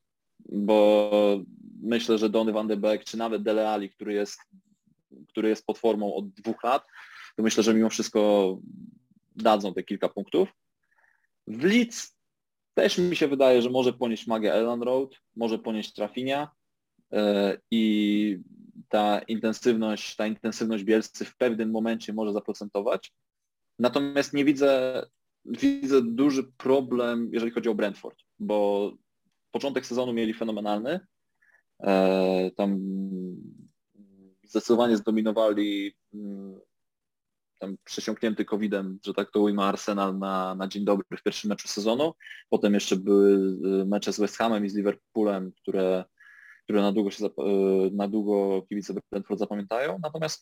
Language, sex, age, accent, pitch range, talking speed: Polish, male, 20-39, native, 100-125 Hz, 130 wpm